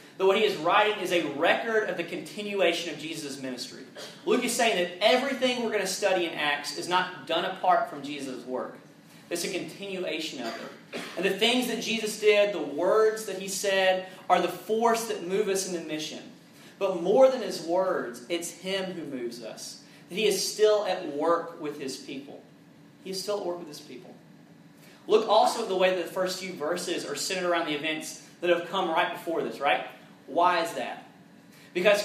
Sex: male